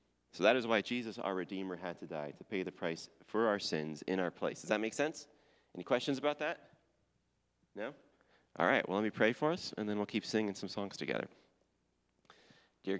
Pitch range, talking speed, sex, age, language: 80-110 Hz, 210 wpm, male, 30-49, English